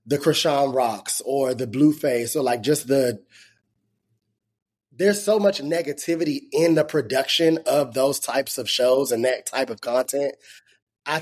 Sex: male